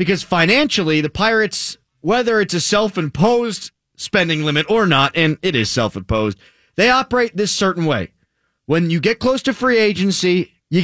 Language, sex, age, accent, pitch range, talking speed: English, male, 30-49, American, 145-205 Hz, 160 wpm